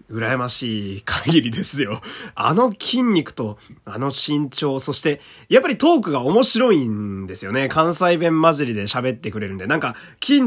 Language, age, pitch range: Japanese, 20-39, 115-175 Hz